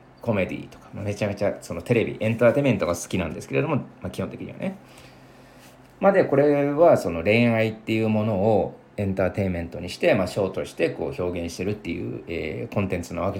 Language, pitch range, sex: Japanese, 95-140 Hz, male